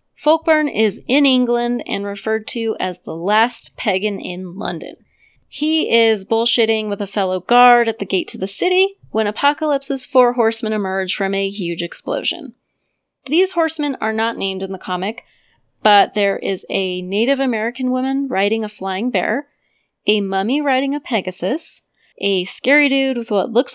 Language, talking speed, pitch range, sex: English, 165 wpm, 190-245 Hz, female